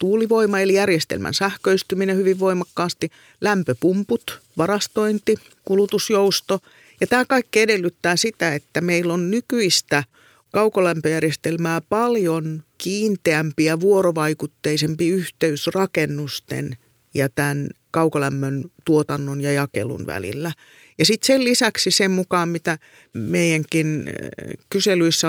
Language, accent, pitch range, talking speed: Finnish, native, 145-190 Hz, 95 wpm